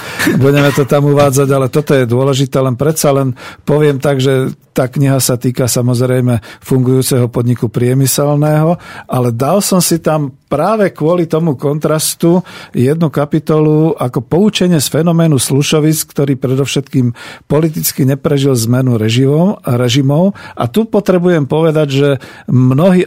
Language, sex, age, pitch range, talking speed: Slovak, male, 50-69, 130-155 Hz, 130 wpm